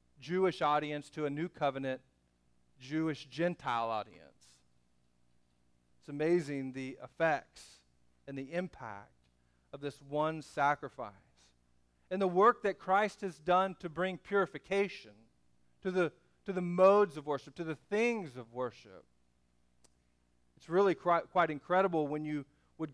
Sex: male